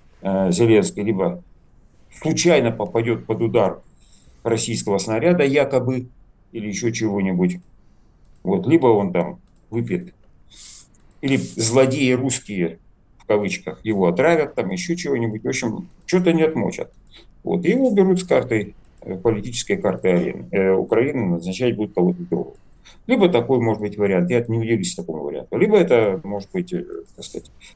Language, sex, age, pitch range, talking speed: Russian, male, 50-69, 95-140 Hz, 130 wpm